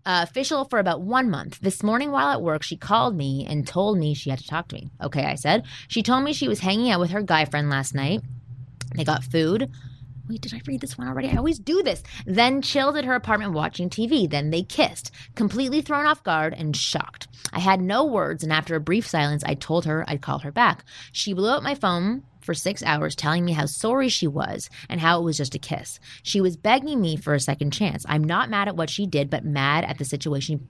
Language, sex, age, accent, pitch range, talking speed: English, female, 20-39, American, 145-200 Hz, 245 wpm